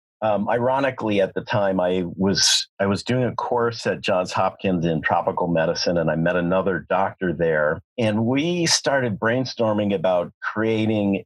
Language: English